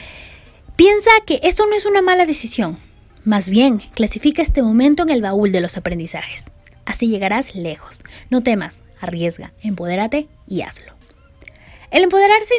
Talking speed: 145 wpm